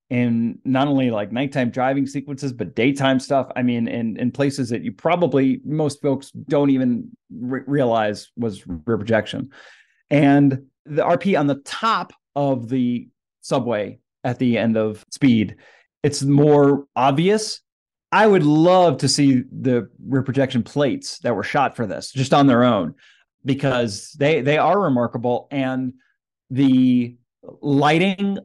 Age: 30-49